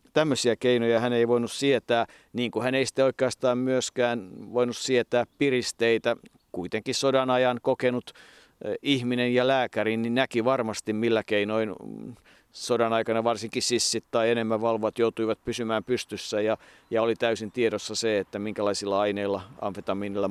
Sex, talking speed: male, 135 wpm